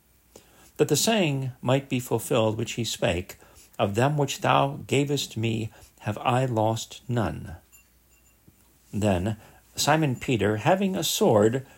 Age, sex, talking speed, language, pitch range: 50-69, male, 125 wpm, English, 100-120 Hz